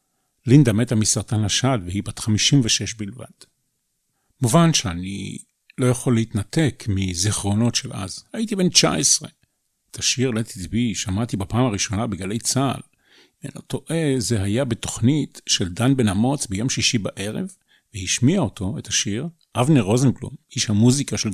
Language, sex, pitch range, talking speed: Hebrew, male, 105-140 Hz, 135 wpm